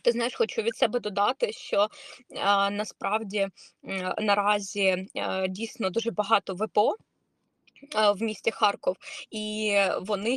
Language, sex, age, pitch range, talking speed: Ukrainian, female, 20-39, 195-235 Hz, 120 wpm